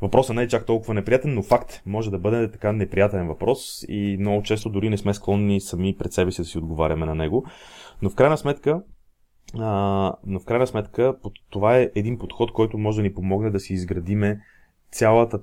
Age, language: 30-49, Bulgarian